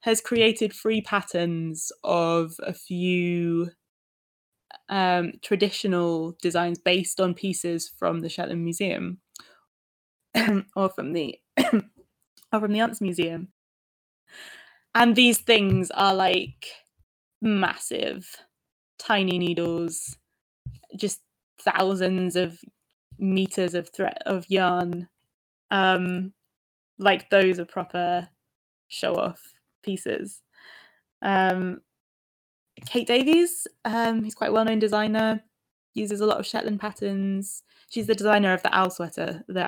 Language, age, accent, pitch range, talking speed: English, 20-39, British, 175-215 Hz, 110 wpm